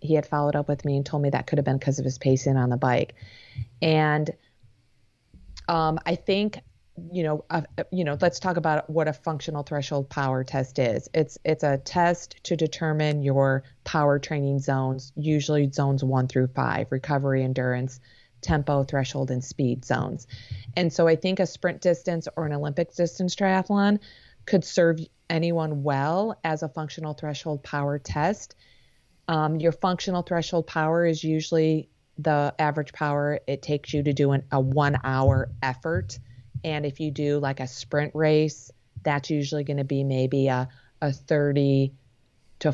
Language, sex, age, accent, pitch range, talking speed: English, female, 30-49, American, 130-155 Hz, 170 wpm